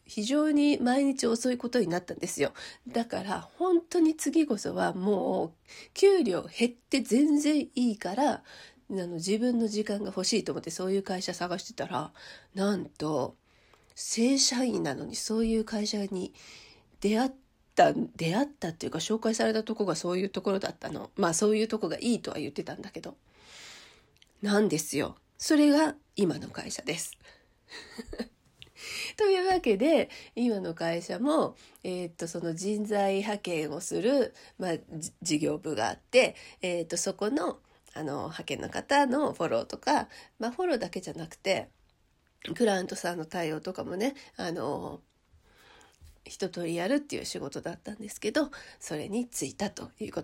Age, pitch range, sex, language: 40-59, 185-265 Hz, female, Japanese